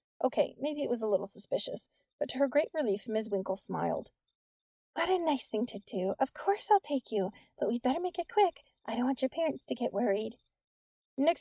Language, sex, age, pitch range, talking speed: English, female, 30-49, 200-250 Hz, 215 wpm